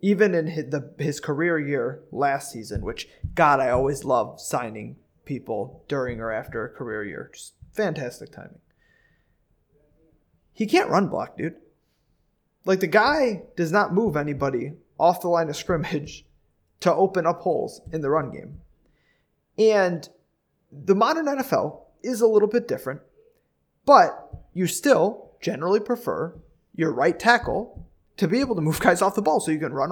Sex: male